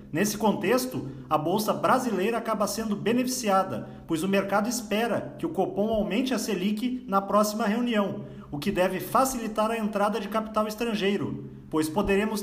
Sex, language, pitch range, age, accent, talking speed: male, Portuguese, 195-230 Hz, 40-59, Brazilian, 155 wpm